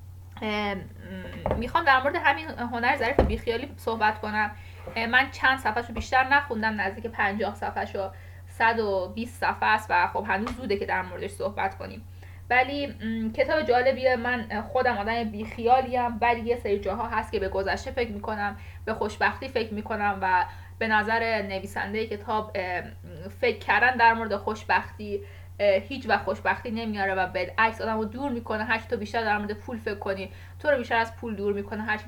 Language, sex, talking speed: Persian, female, 165 wpm